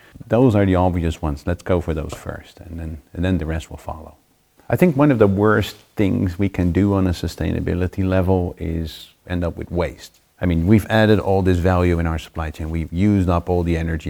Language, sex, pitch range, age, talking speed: English, male, 80-90 Hz, 40-59, 230 wpm